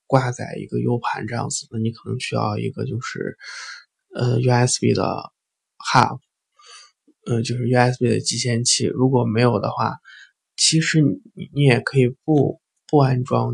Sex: male